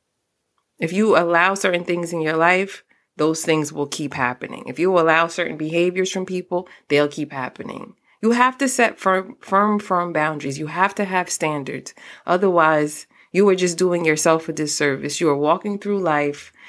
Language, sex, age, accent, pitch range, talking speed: English, female, 30-49, American, 165-230 Hz, 175 wpm